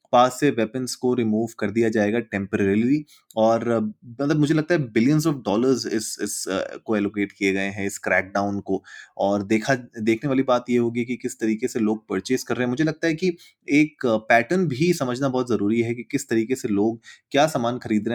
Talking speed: 220 wpm